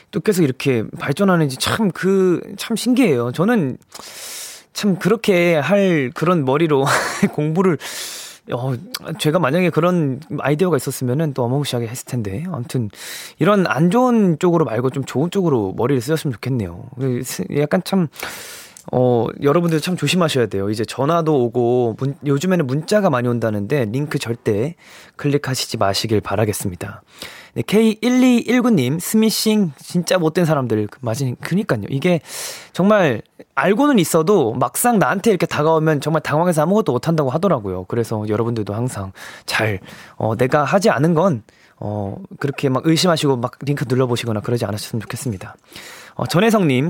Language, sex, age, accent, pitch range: Korean, male, 20-39, native, 125-185 Hz